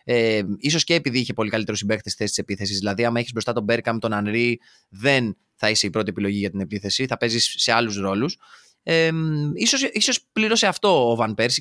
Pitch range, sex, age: 105-155 Hz, male, 20-39